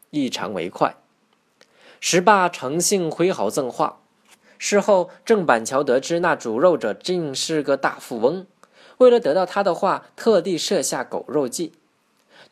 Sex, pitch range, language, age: male, 135-200 Hz, Chinese, 20-39